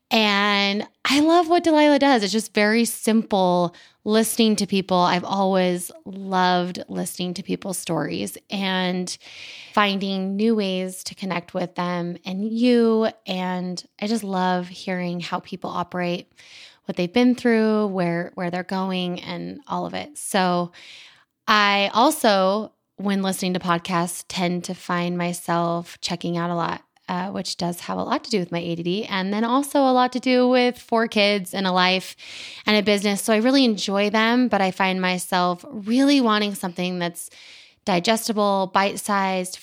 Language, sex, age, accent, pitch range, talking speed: English, female, 20-39, American, 180-215 Hz, 160 wpm